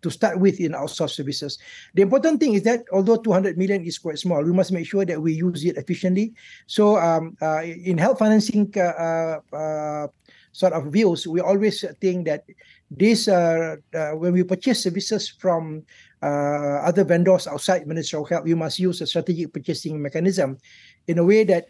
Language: English